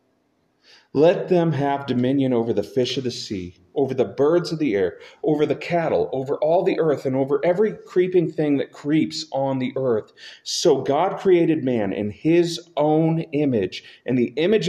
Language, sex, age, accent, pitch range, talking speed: English, male, 40-59, American, 115-150 Hz, 180 wpm